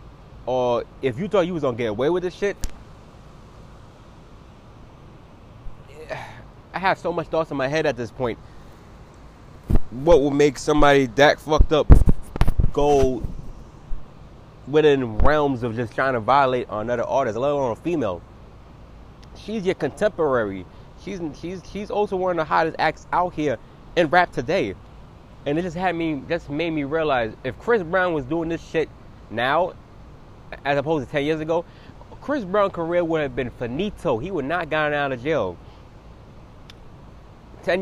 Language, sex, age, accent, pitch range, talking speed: English, male, 20-39, American, 120-165 Hz, 155 wpm